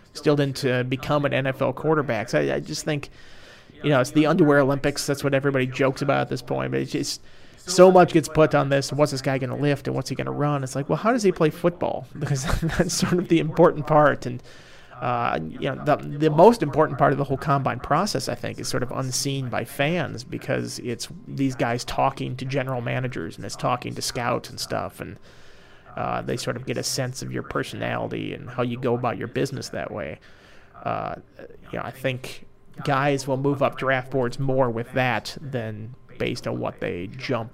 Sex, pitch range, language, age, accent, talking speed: male, 125-150 Hz, English, 30-49, American, 220 wpm